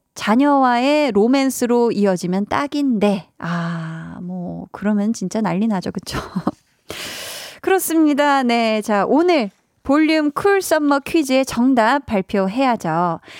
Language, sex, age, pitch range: Korean, female, 20-39, 205-300 Hz